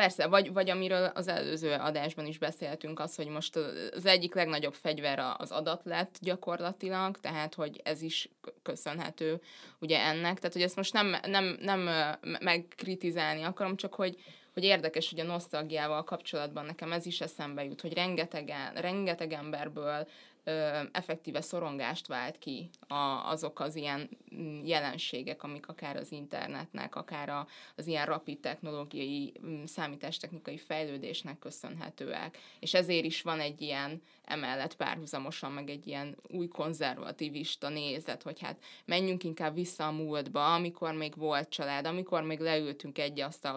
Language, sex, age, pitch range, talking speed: Hungarian, female, 20-39, 150-175 Hz, 140 wpm